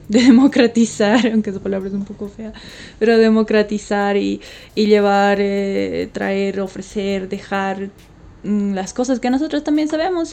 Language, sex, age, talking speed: Spanish, female, 20-39, 145 wpm